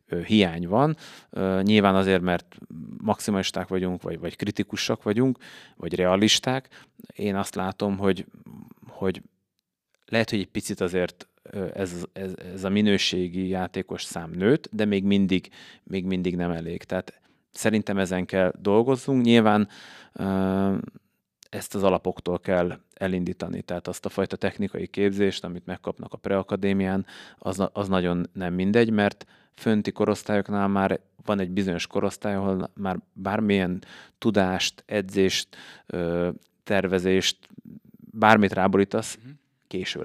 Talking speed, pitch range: 120 wpm, 90-105 Hz